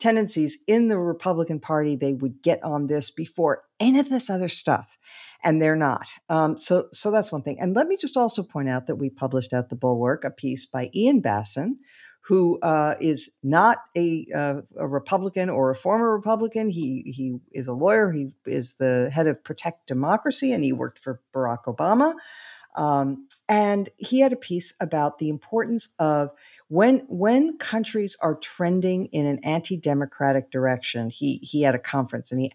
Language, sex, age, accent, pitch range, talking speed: English, female, 50-69, American, 135-190 Hz, 180 wpm